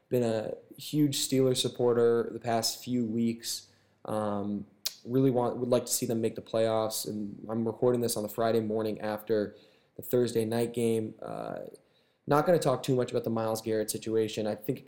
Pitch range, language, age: 105-120 Hz, English, 20-39